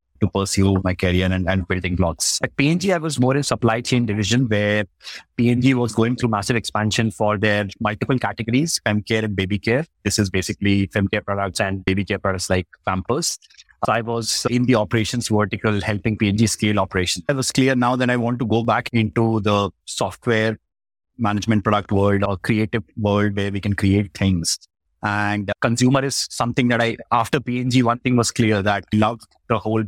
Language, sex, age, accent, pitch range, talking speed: English, male, 30-49, Indian, 100-115 Hz, 190 wpm